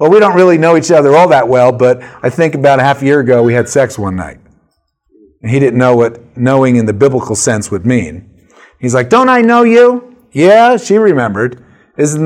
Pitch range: 130-175 Hz